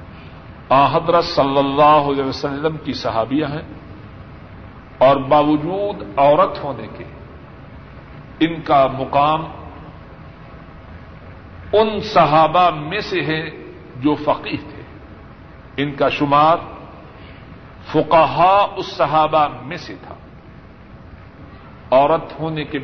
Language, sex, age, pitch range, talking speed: Urdu, male, 50-69, 140-175 Hz, 95 wpm